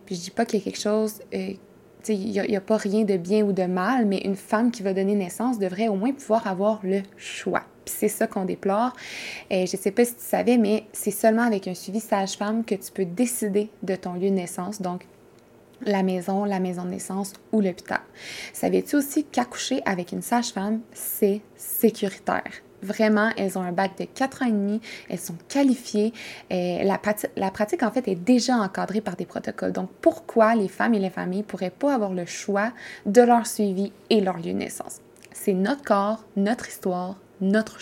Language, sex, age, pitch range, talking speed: French, female, 20-39, 195-225 Hz, 215 wpm